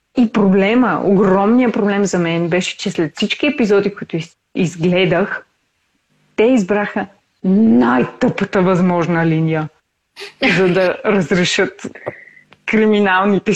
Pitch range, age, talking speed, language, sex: 185-240 Hz, 30-49, 95 wpm, Bulgarian, female